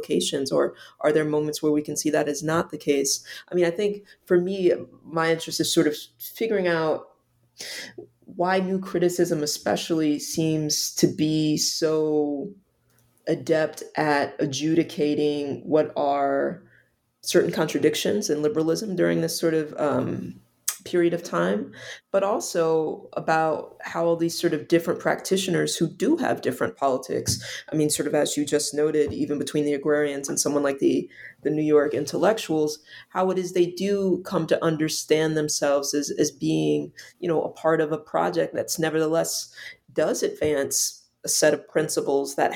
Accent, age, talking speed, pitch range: American, 20-39, 160 wpm, 145-170 Hz